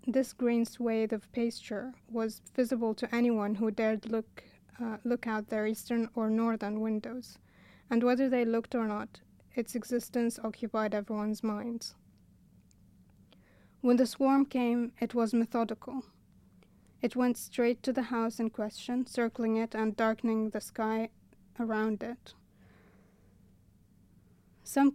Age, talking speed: 30-49, 130 wpm